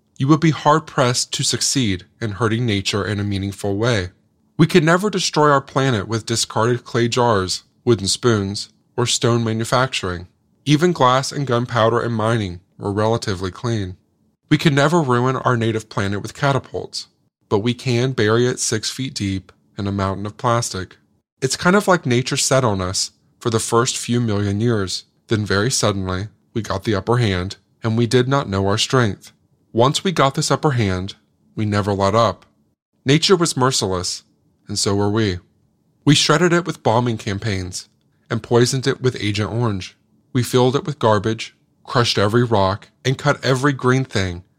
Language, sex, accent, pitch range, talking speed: English, male, American, 100-130 Hz, 175 wpm